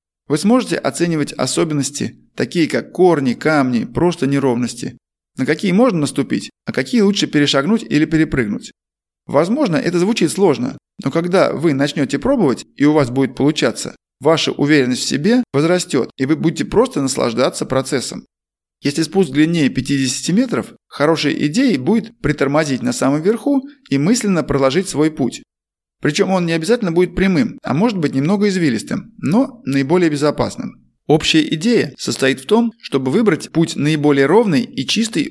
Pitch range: 135-195 Hz